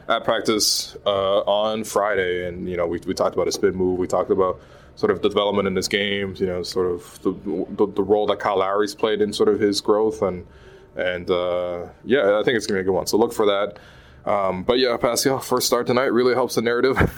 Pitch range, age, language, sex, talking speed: 90-105 Hz, 20-39, English, male, 240 wpm